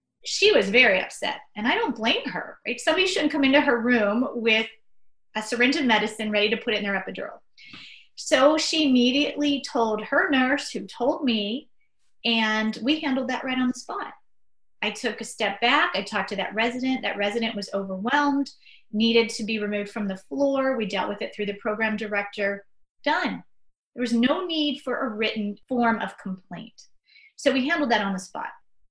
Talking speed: 190 wpm